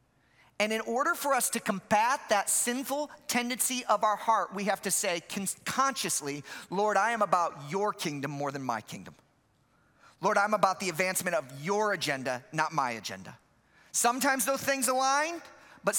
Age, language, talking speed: 40-59, English, 165 wpm